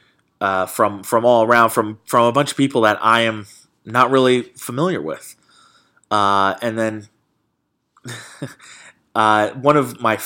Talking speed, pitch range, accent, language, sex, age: 145 wpm, 105-135 Hz, American, English, male, 20-39